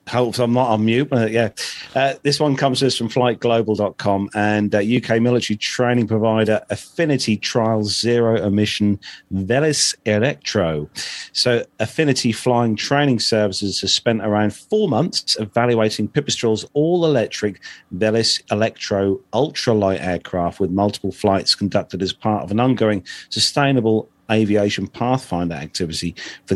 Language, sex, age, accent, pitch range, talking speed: English, male, 40-59, British, 100-125 Hz, 130 wpm